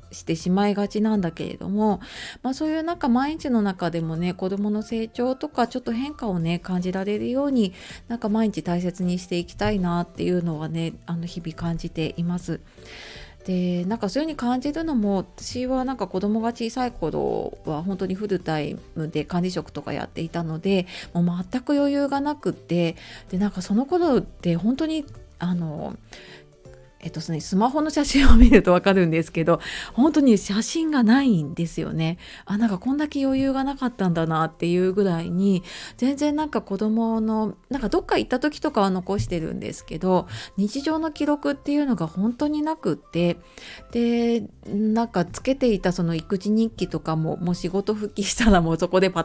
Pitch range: 175-245 Hz